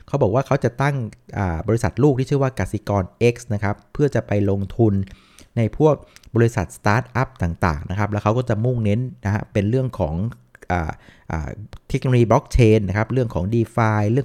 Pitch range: 95-125 Hz